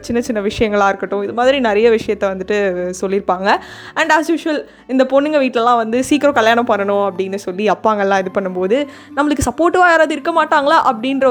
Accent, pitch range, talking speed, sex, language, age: native, 220-295 Hz, 165 wpm, female, Tamil, 20-39